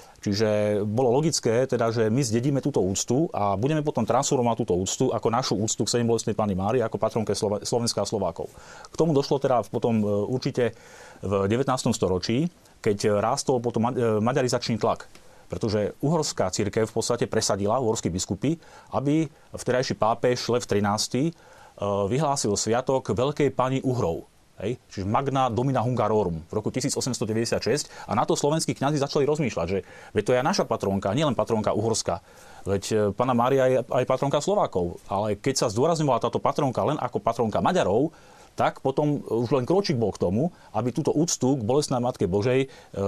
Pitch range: 105-135 Hz